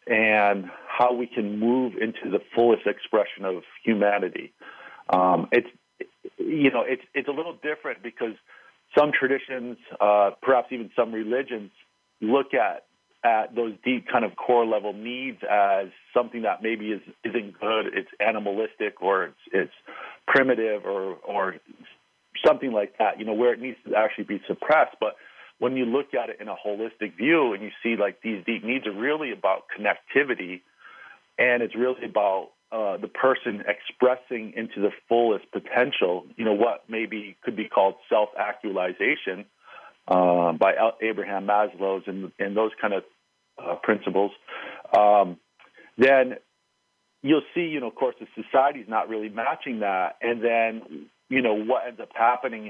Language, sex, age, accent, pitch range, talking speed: English, male, 50-69, American, 105-125 Hz, 160 wpm